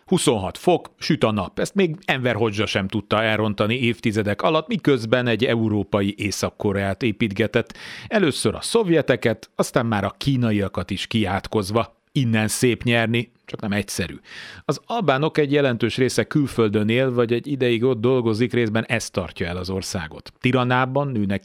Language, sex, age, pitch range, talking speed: Hungarian, male, 40-59, 100-120 Hz, 150 wpm